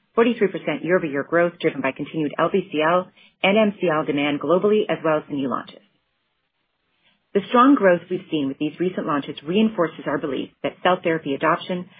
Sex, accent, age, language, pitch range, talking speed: female, American, 30-49, English, 150-185 Hz, 165 wpm